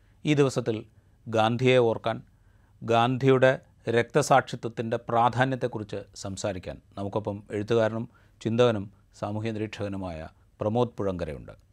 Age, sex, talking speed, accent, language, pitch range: 40-59, male, 70 wpm, native, Malayalam, 110-150 Hz